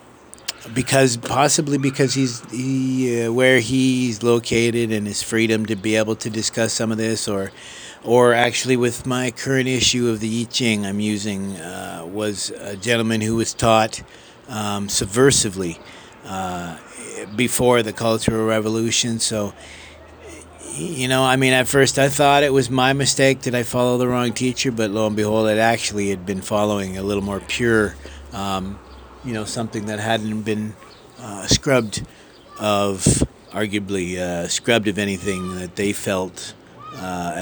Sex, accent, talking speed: male, American, 155 wpm